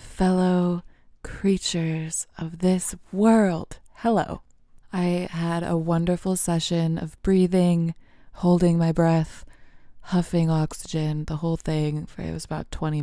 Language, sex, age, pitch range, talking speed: English, female, 20-39, 155-175 Hz, 120 wpm